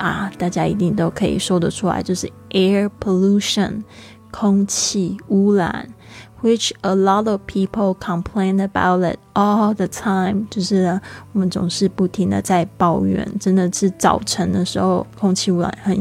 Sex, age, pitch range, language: female, 20-39, 180-200 Hz, Chinese